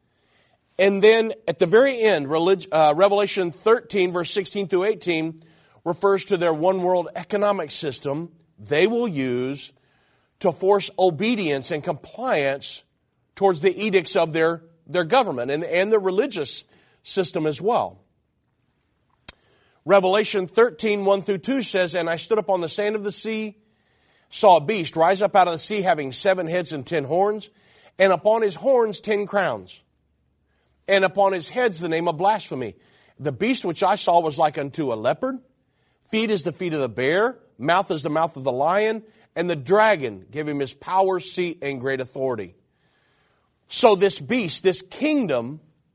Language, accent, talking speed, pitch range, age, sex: English, American, 165 wpm, 160-210 Hz, 50-69, male